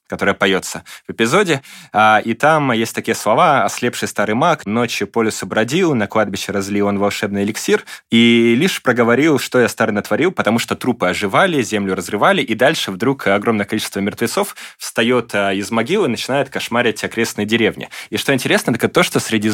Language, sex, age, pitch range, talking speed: Russian, male, 20-39, 100-115 Hz, 170 wpm